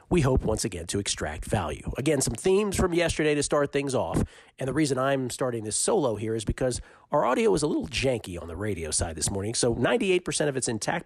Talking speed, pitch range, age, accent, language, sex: 235 wpm, 110-155 Hz, 40-59, American, English, male